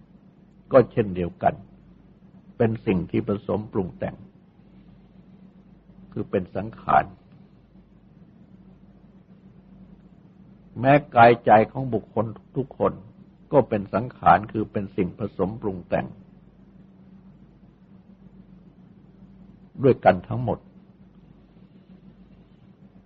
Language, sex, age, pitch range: Thai, male, 60-79, 120-190 Hz